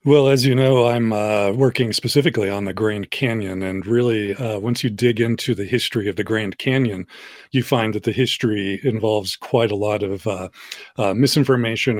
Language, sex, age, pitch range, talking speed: English, male, 40-59, 105-125 Hz, 190 wpm